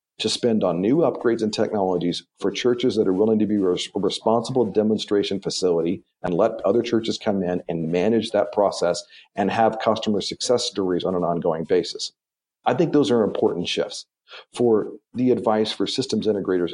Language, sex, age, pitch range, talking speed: English, male, 40-59, 90-125 Hz, 175 wpm